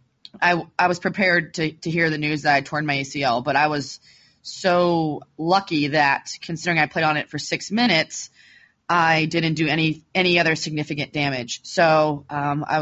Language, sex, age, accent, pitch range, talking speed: English, female, 20-39, American, 150-175 Hz, 185 wpm